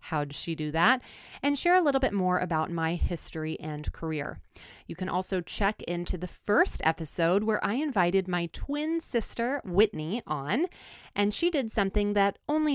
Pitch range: 160-215 Hz